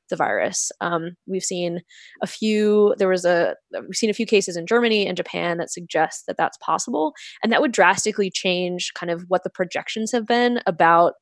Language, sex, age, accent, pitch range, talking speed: English, female, 20-39, American, 180-225 Hz, 200 wpm